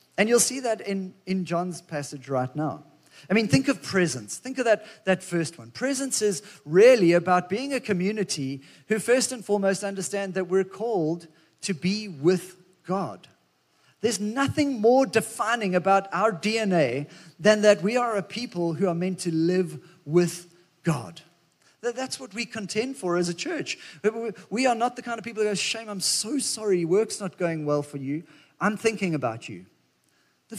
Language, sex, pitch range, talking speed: English, male, 175-220 Hz, 180 wpm